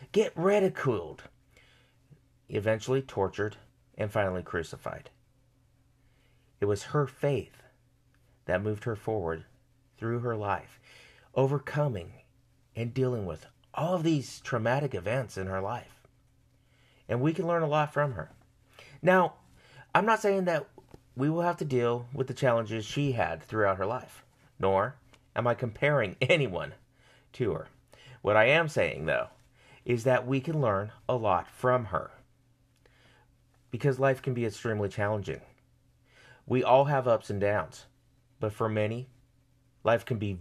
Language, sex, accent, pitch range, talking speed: English, male, American, 110-130 Hz, 140 wpm